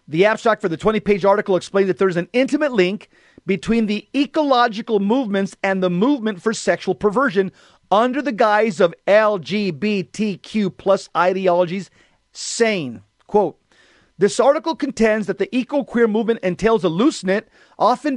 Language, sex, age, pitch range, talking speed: English, male, 40-59, 190-225 Hz, 140 wpm